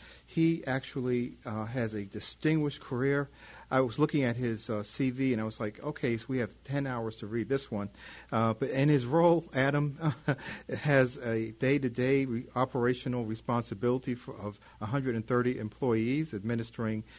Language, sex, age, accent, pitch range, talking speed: English, male, 50-69, American, 110-135 Hz, 155 wpm